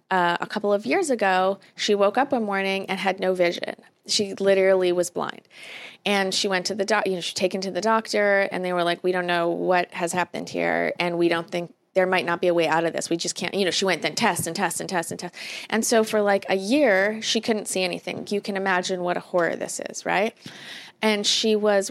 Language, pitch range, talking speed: English, 185-220 Hz, 255 wpm